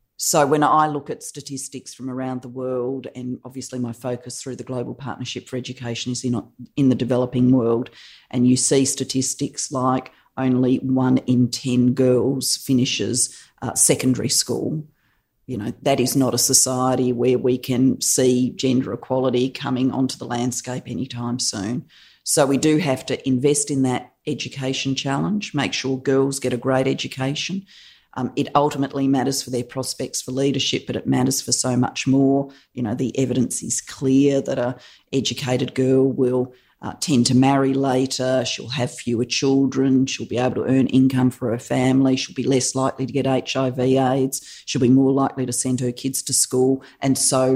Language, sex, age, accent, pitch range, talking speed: English, female, 40-59, Australian, 125-135 Hz, 175 wpm